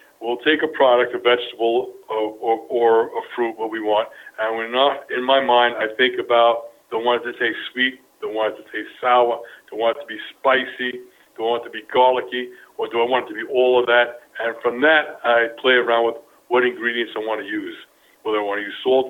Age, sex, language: 60-79, male, English